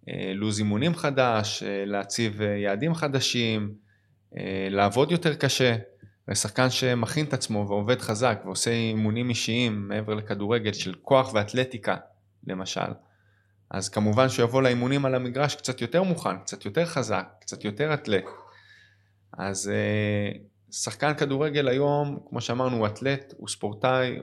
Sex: male